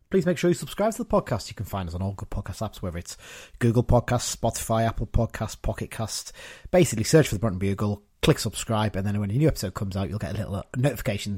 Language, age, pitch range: English, 30-49, 105-145 Hz